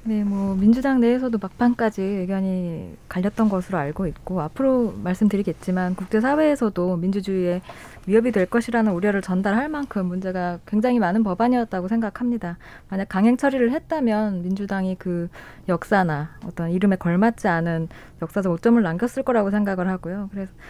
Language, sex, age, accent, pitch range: Korean, female, 20-39, native, 185-235 Hz